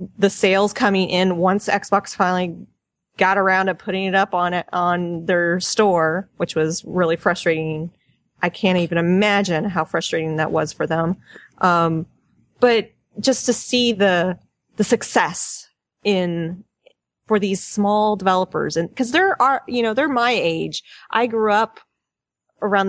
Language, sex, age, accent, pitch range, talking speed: English, female, 30-49, American, 175-220 Hz, 150 wpm